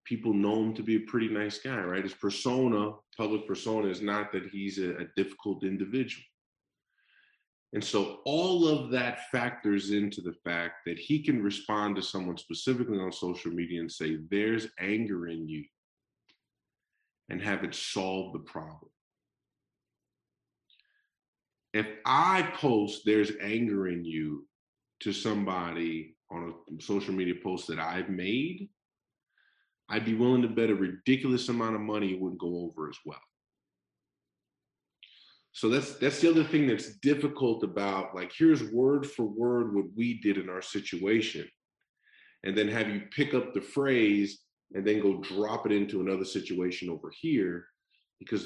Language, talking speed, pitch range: English, 155 wpm, 95-120 Hz